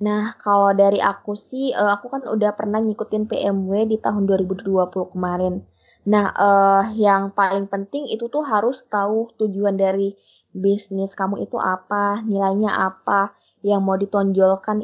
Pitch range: 195-215 Hz